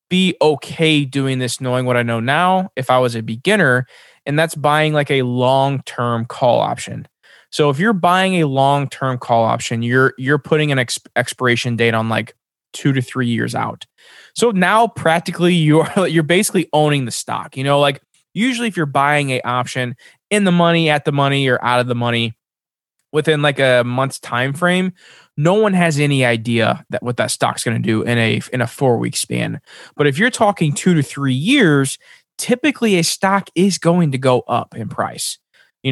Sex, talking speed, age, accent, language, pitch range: male, 190 wpm, 20-39, American, English, 125-160 Hz